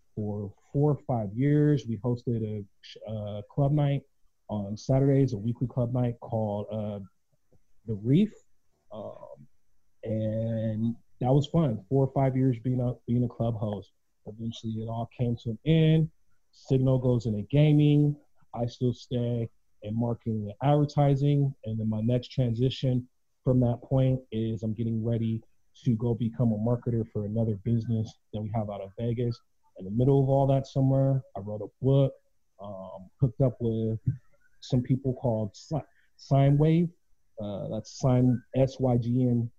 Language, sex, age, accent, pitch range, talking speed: English, male, 30-49, American, 110-130 Hz, 150 wpm